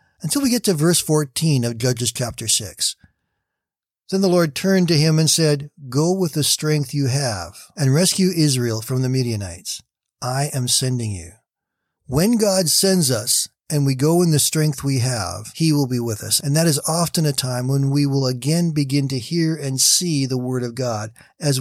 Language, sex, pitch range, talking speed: English, male, 125-160 Hz, 195 wpm